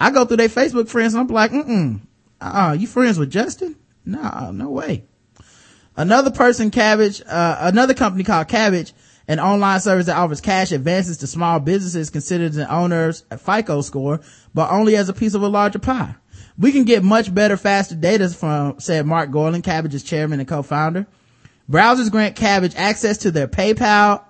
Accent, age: American, 30-49